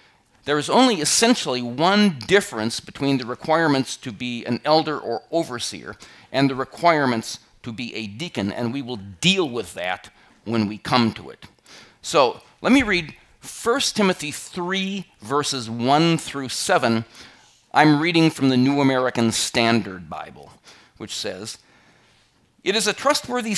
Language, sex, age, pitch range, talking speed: English, male, 40-59, 120-180 Hz, 150 wpm